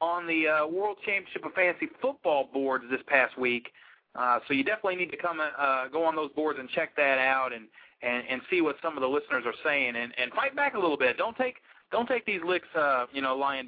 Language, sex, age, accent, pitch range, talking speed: English, male, 40-59, American, 135-200 Hz, 245 wpm